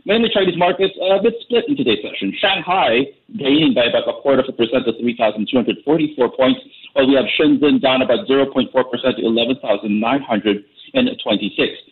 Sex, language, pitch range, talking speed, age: male, English, 115-150 Hz, 155 wpm, 40-59